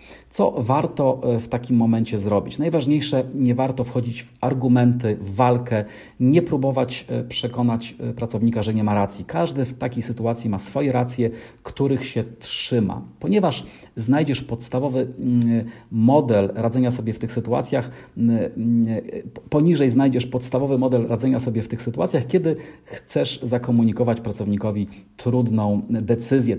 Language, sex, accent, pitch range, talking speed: Polish, male, native, 115-130 Hz, 125 wpm